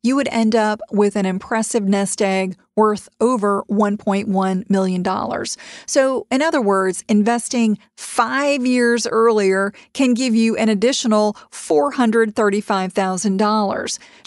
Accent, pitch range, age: American, 205-245 Hz, 40-59